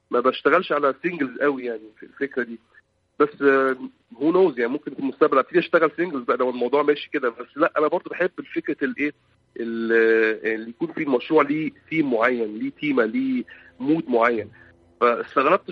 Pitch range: 120-165 Hz